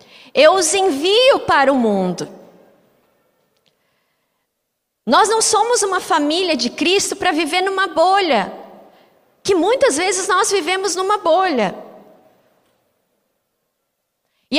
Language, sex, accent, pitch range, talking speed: Portuguese, female, Brazilian, 275-390 Hz, 105 wpm